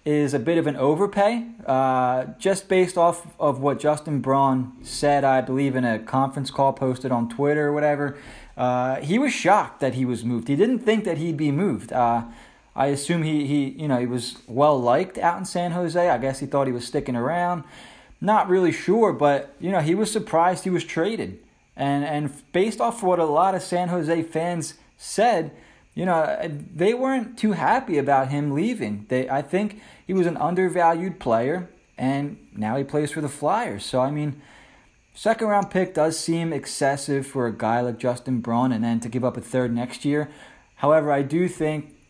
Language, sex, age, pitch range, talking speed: English, male, 20-39, 125-165 Hz, 200 wpm